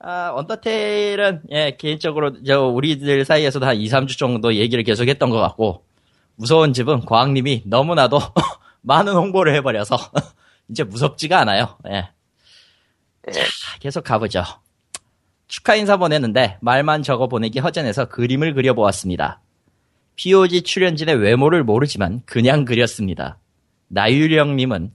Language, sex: Korean, male